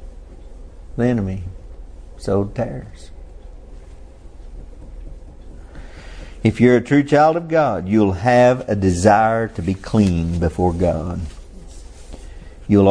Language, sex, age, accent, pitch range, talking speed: English, male, 50-69, American, 85-115 Hz, 100 wpm